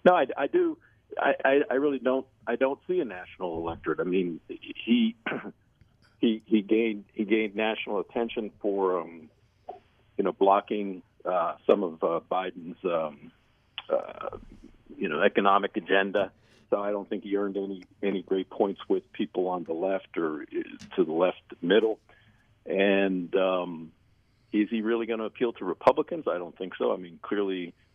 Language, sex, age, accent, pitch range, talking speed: English, male, 50-69, American, 95-120 Hz, 165 wpm